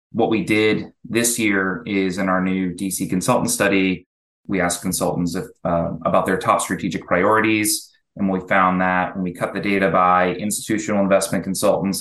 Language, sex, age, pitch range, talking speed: English, male, 20-39, 90-105 Hz, 175 wpm